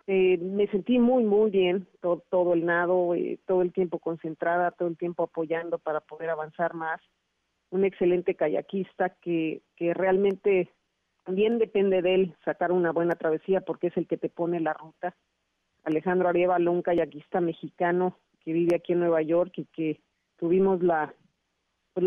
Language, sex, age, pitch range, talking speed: Spanish, female, 40-59, 175-205 Hz, 165 wpm